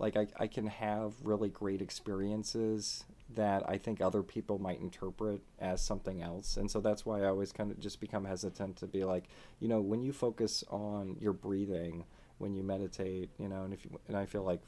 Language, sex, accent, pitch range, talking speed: English, male, American, 95-105 Hz, 215 wpm